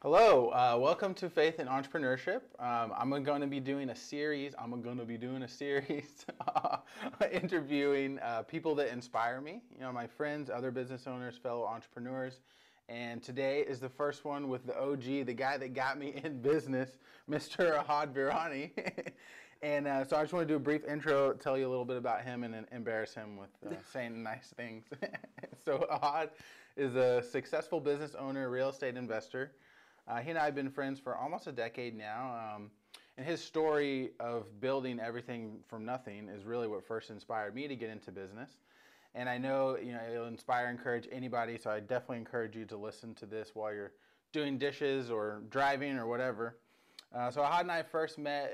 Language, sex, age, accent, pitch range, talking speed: English, male, 20-39, American, 115-145 Hz, 195 wpm